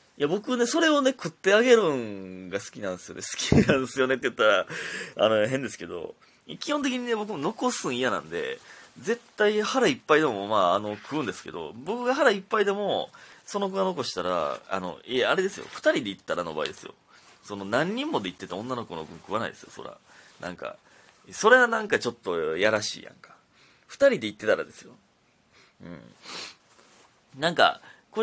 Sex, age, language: male, 30-49, Japanese